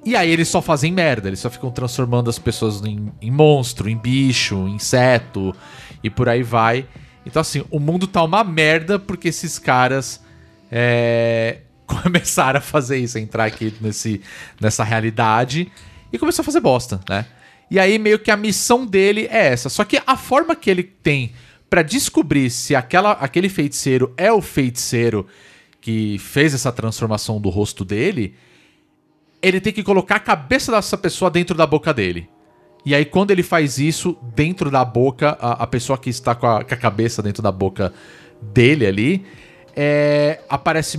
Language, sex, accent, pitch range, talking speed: Portuguese, male, Brazilian, 115-170 Hz, 165 wpm